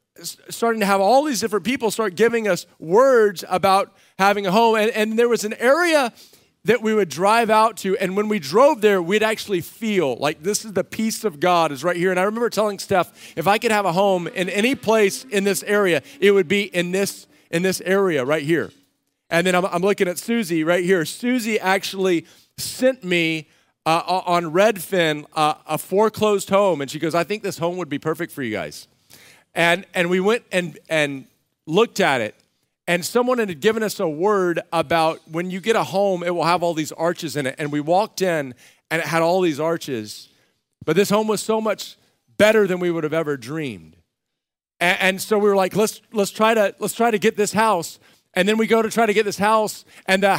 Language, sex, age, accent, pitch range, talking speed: English, male, 40-59, American, 170-215 Hz, 220 wpm